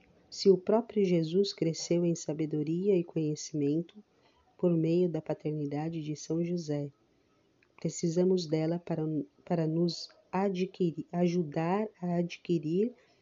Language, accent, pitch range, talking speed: Portuguese, Brazilian, 155-185 Hz, 110 wpm